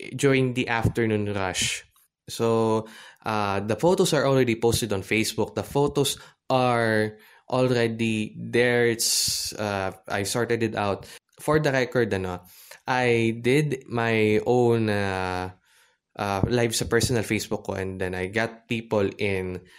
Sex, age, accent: male, 20-39, Filipino